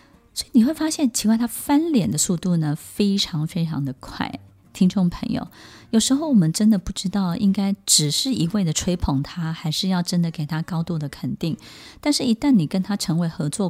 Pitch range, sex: 160-225 Hz, female